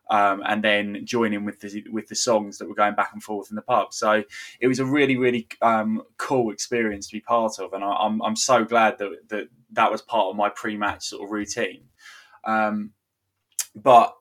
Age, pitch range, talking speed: 20-39, 105-120 Hz, 210 wpm